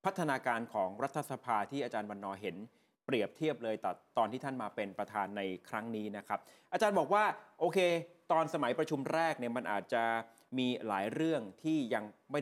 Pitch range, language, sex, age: 115-160 Hz, Thai, male, 30-49